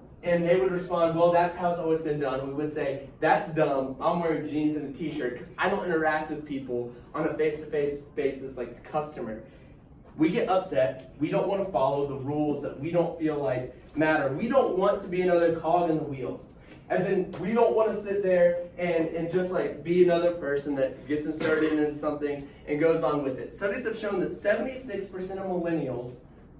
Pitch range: 150-185 Hz